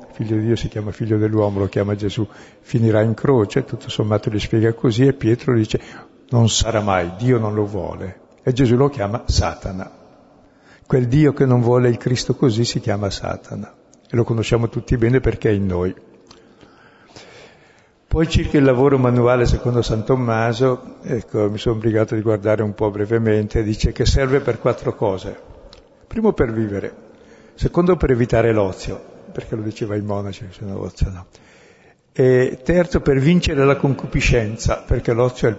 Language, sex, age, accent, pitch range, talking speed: Italian, male, 60-79, native, 105-135 Hz, 170 wpm